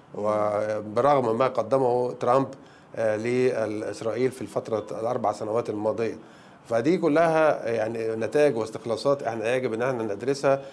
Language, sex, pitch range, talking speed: Arabic, male, 110-135 Hz, 110 wpm